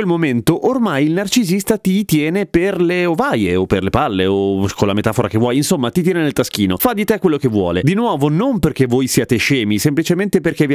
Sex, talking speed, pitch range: male, 225 wpm, 120-195 Hz